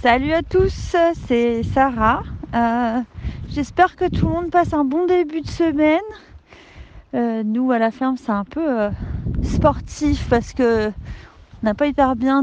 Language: French